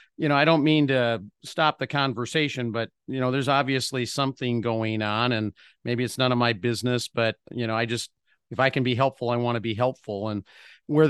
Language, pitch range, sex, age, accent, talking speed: English, 120-160 Hz, male, 50-69, American, 220 wpm